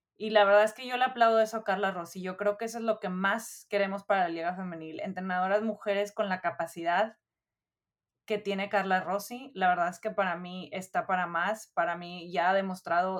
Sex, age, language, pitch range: female, 20-39, Spanish, 180-210 Hz